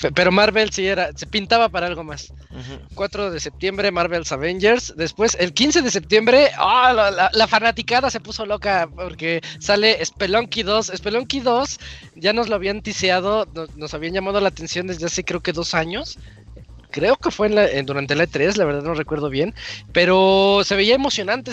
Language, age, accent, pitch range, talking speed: Spanish, 20-39, Mexican, 165-230 Hz, 180 wpm